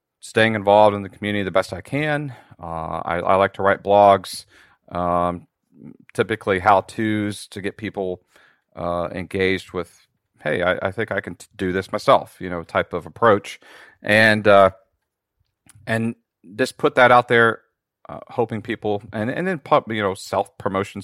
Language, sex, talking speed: English, male, 165 wpm